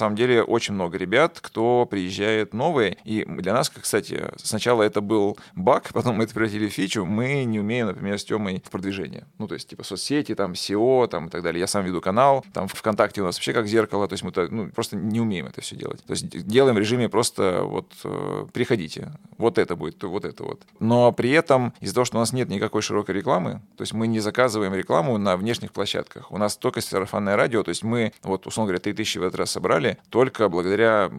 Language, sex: Russian, male